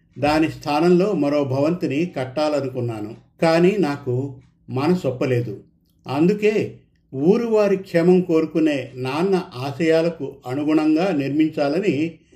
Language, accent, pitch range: Telugu, native, 130-175 Hz